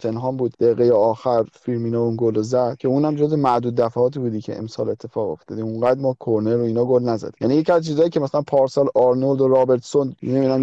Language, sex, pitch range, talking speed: Persian, male, 120-150 Hz, 205 wpm